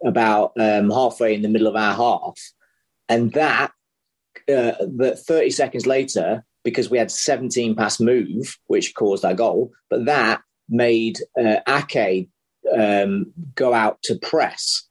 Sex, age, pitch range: male, 30-49, 110-145 Hz